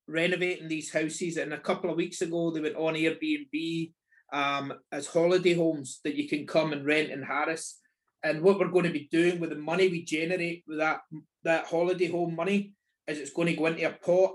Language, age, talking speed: English, 30-49, 215 wpm